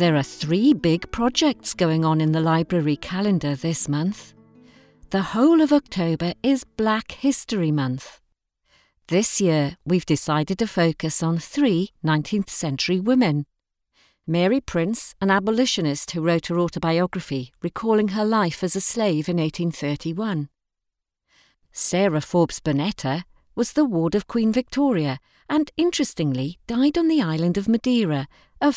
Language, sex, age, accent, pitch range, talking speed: English, female, 50-69, British, 155-225 Hz, 140 wpm